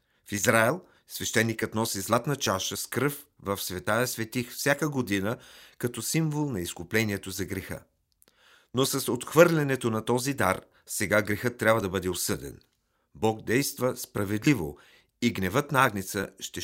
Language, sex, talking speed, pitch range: Bulgarian, male, 145 wpm, 95-130 Hz